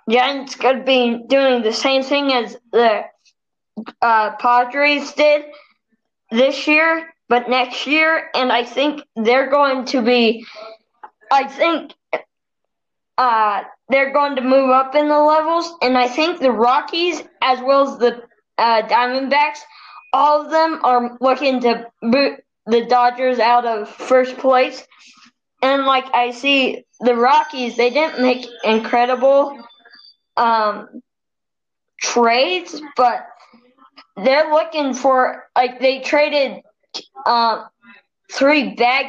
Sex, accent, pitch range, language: female, American, 235-285 Hz, English